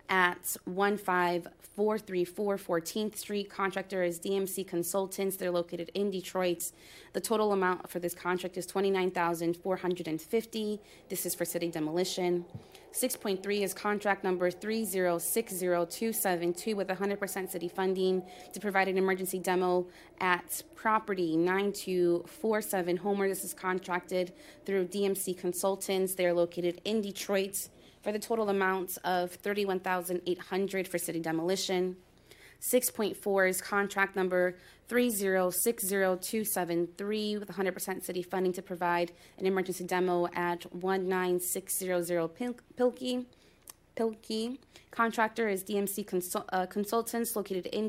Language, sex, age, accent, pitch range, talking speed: English, female, 20-39, American, 180-200 Hz, 130 wpm